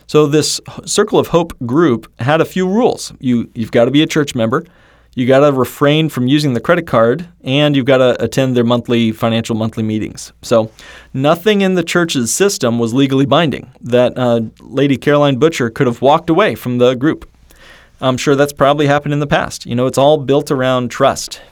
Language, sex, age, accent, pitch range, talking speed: English, male, 30-49, American, 120-145 Hz, 205 wpm